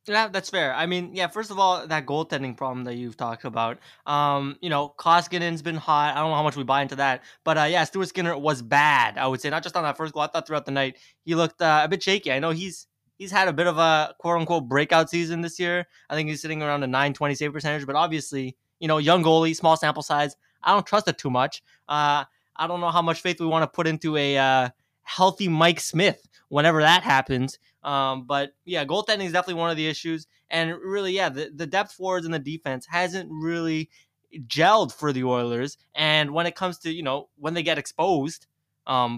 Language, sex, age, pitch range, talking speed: English, male, 20-39, 140-170 Hz, 235 wpm